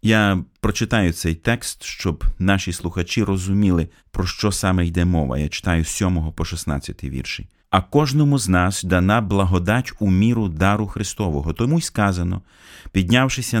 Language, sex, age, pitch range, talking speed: Ukrainian, male, 30-49, 90-110 Hz, 150 wpm